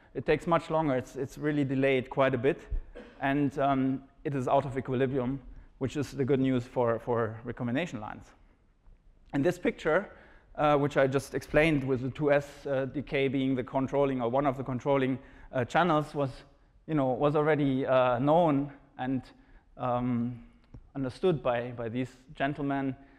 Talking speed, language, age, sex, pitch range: 165 wpm, English, 30-49, male, 125-145 Hz